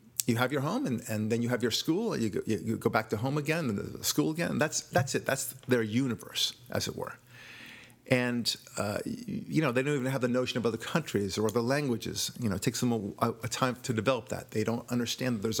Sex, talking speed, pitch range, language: male, 245 wpm, 115-135 Hz, English